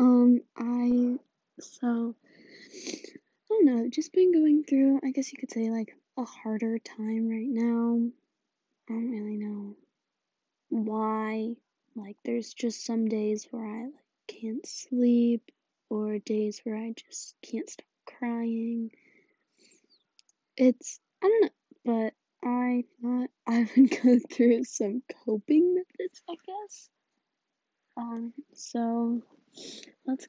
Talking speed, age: 125 wpm, 10-29